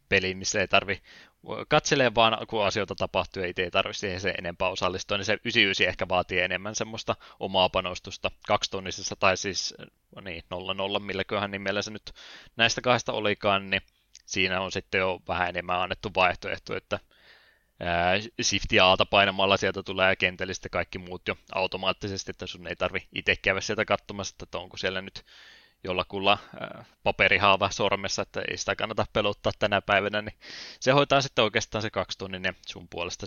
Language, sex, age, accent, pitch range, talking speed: Finnish, male, 20-39, native, 90-105 Hz, 165 wpm